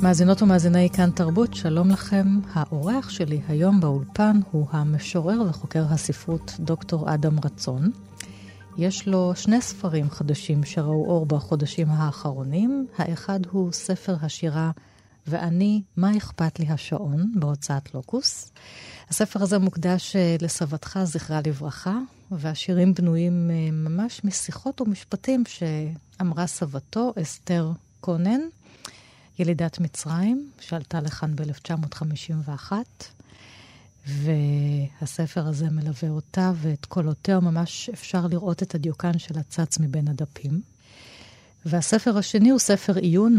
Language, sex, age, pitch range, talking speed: Hebrew, female, 30-49, 150-190 Hz, 105 wpm